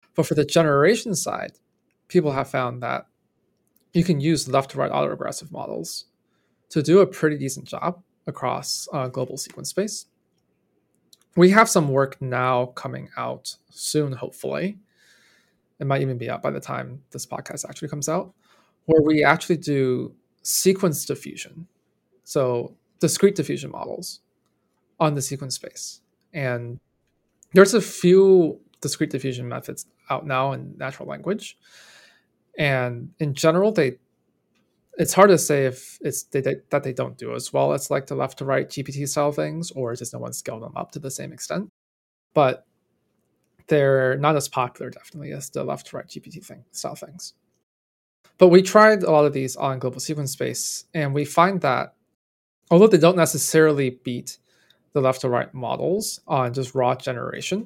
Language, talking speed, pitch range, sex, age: English, 155 wpm, 130-175 Hz, male, 20-39